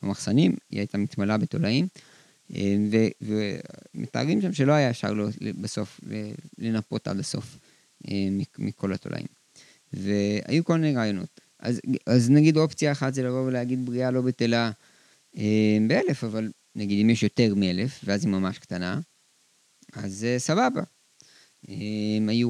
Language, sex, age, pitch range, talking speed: Hebrew, male, 20-39, 105-125 Hz, 115 wpm